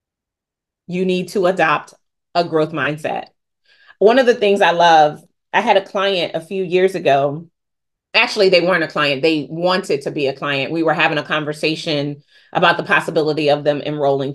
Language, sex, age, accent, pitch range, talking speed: English, female, 30-49, American, 160-225 Hz, 180 wpm